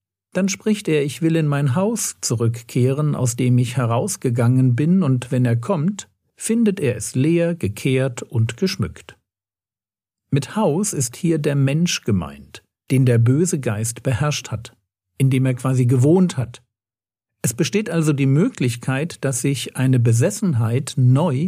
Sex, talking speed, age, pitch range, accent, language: male, 150 wpm, 50-69, 115-160 Hz, German, German